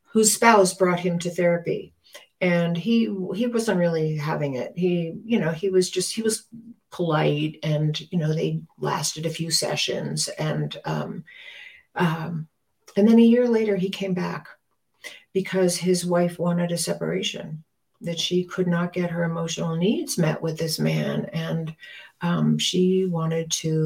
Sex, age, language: female, 60-79, English